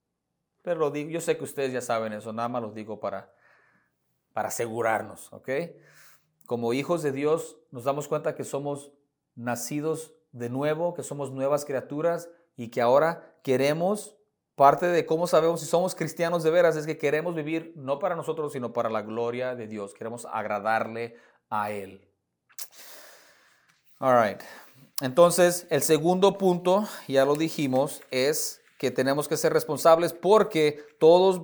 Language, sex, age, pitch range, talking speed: English, male, 30-49, 125-160 Hz, 155 wpm